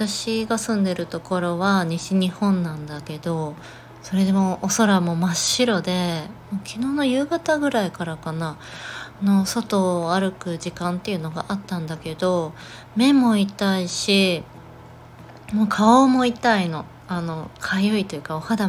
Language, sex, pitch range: Japanese, female, 160-210 Hz